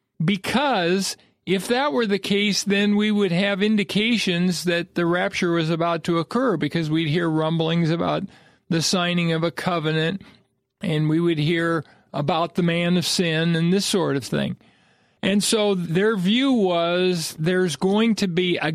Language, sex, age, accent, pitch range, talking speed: English, male, 50-69, American, 165-200 Hz, 165 wpm